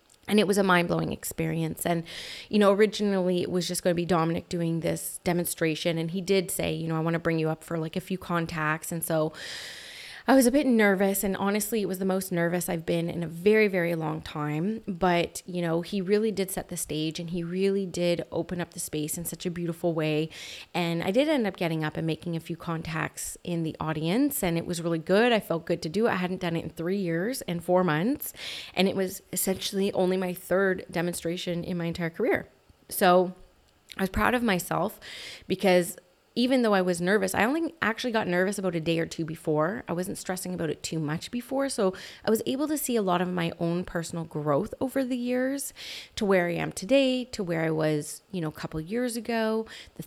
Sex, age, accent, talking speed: female, 30-49, American, 230 wpm